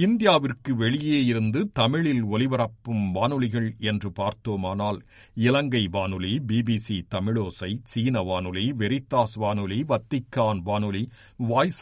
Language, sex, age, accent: Tamil, male, 50-69, native